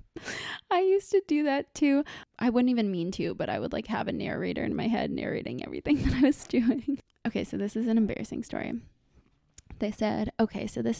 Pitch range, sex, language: 215-250 Hz, female, English